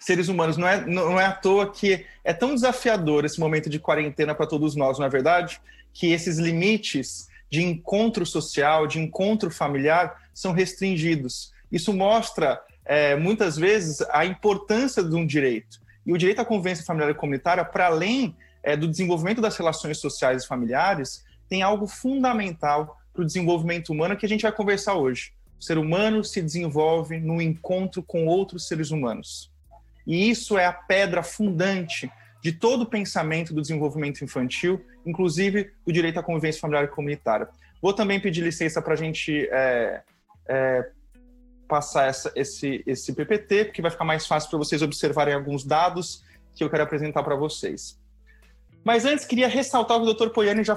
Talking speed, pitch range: 170 wpm, 150-200 Hz